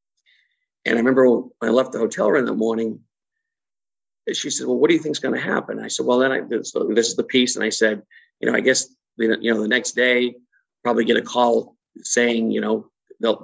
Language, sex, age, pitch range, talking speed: English, male, 50-69, 115-150 Hz, 235 wpm